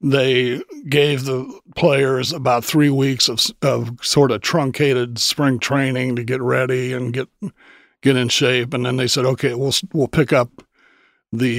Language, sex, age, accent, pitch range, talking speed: English, male, 60-79, American, 125-150 Hz, 165 wpm